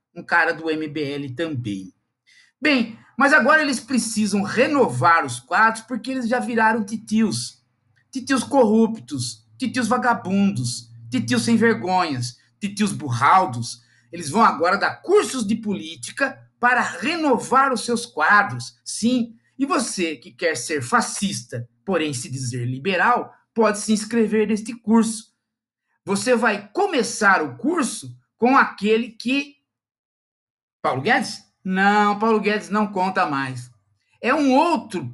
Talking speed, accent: 125 wpm, Brazilian